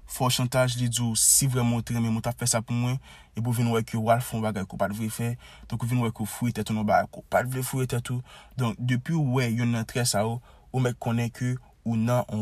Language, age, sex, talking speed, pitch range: French, 20-39, male, 230 wpm, 100-125 Hz